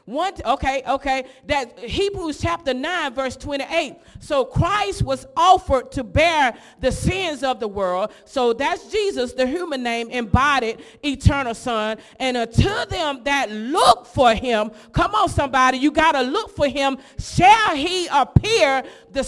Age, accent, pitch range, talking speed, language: 40-59, American, 265-370 Hz, 155 wpm, English